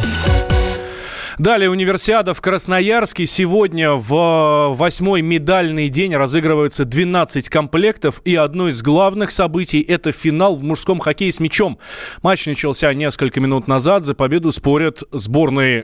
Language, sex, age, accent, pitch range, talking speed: Russian, male, 20-39, native, 125-165 Hz, 125 wpm